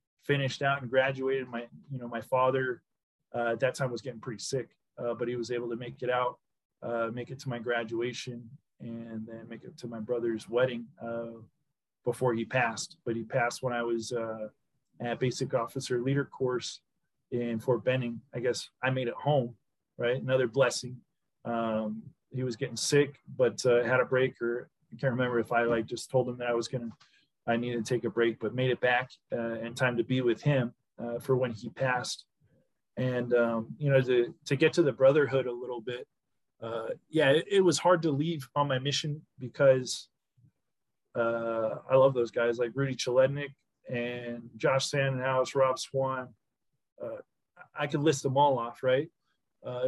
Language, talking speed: English, 195 wpm